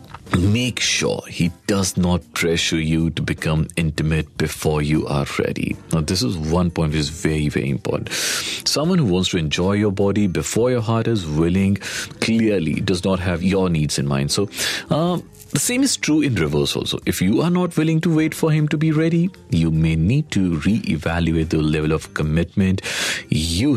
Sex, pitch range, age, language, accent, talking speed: male, 85-115 Hz, 40-59, Hindi, native, 190 wpm